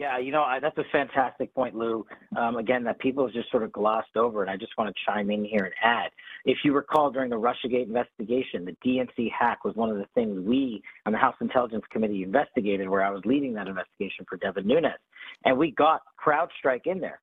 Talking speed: 225 wpm